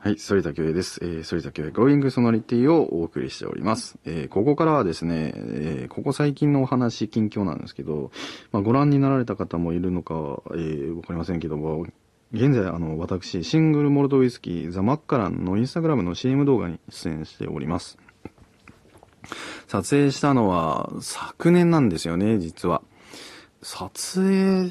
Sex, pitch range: male, 85-130 Hz